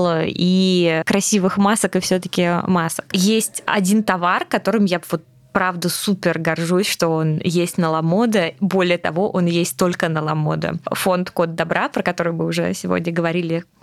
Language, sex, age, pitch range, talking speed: Russian, female, 20-39, 165-195 Hz, 155 wpm